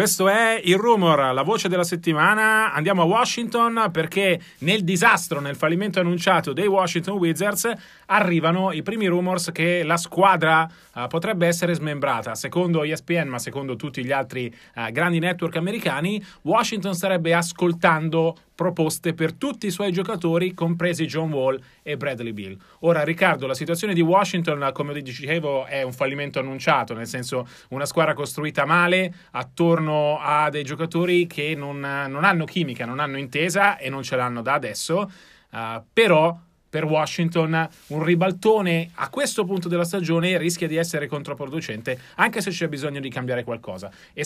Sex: male